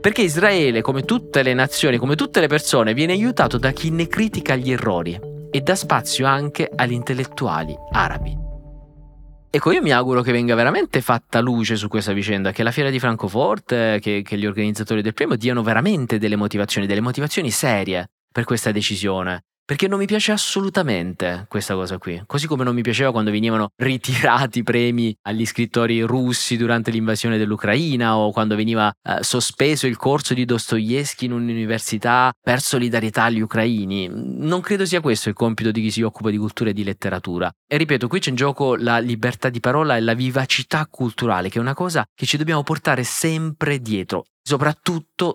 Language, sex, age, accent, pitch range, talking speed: Italian, male, 20-39, native, 110-145 Hz, 180 wpm